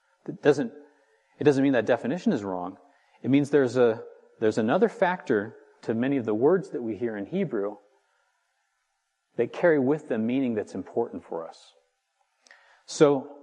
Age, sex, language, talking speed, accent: 40-59, male, English, 160 wpm, American